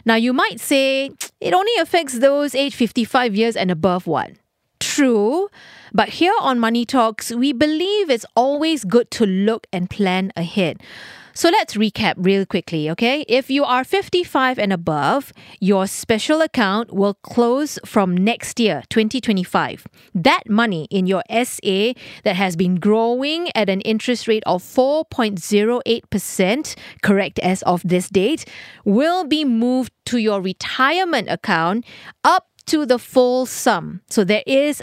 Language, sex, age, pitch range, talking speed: English, female, 30-49, 200-280 Hz, 150 wpm